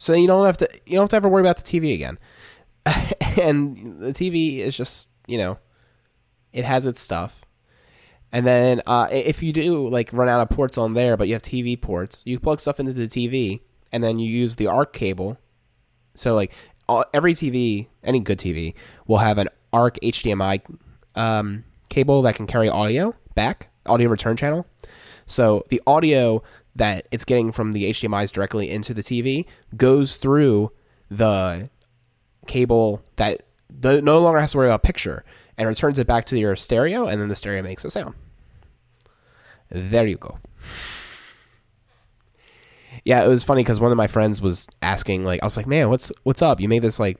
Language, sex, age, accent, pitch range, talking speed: English, male, 20-39, American, 110-135 Hz, 185 wpm